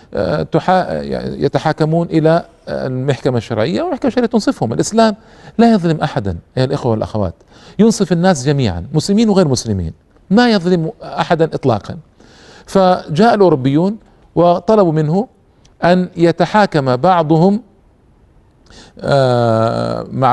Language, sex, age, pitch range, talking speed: Arabic, male, 50-69, 125-180 Hz, 95 wpm